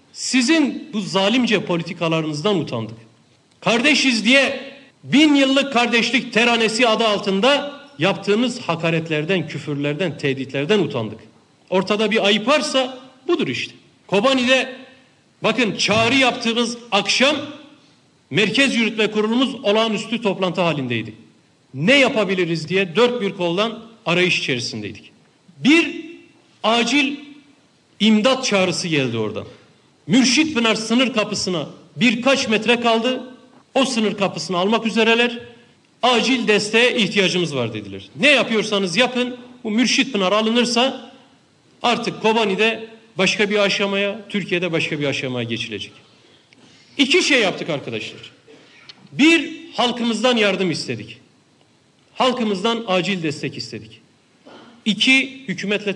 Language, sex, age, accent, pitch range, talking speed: Turkish, male, 60-79, native, 175-255 Hz, 105 wpm